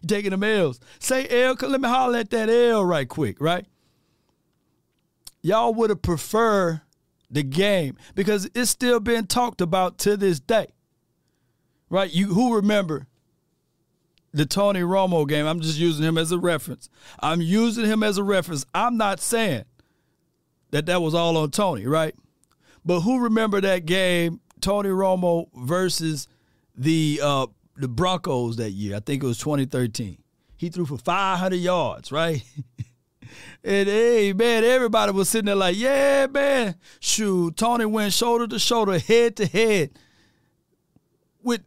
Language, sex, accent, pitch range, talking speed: English, male, American, 155-220 Hz, 150 wpm